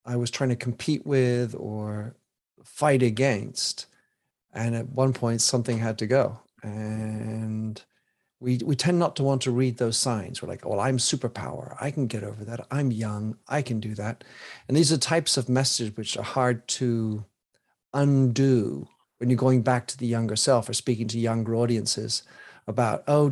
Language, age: English, 40-59